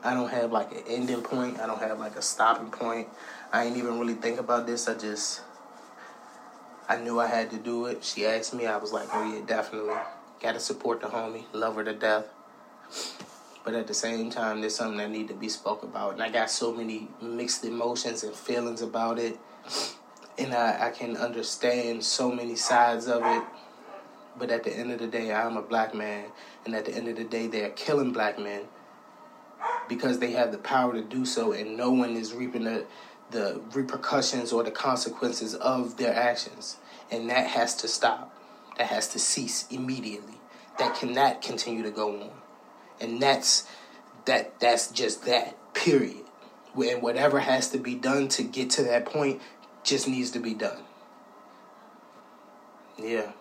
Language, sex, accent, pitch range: English, male, American, 110-120 Hz